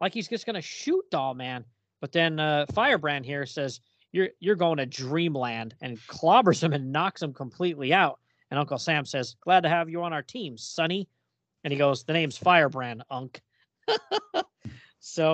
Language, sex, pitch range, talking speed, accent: English, male, 130-175 Hz, 185 wpm, American